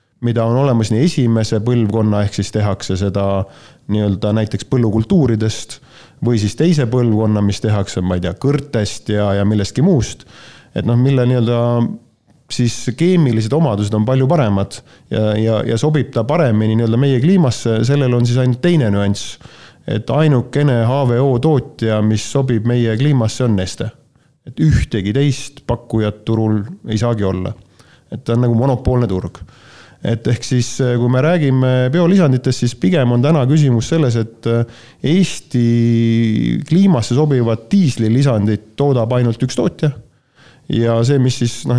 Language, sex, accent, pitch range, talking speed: English, male, Finnish, 110-140 Hz, 145 wpm